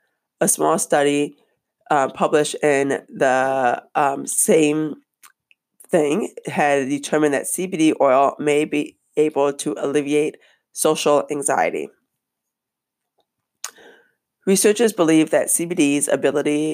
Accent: American